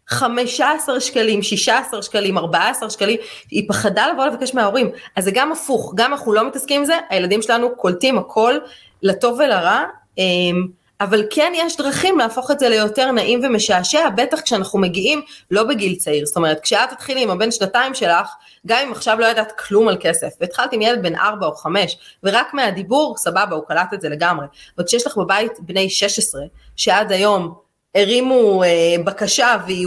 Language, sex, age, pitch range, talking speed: Hebrew, female, 20-39, 175-240 Hz, 180 wpm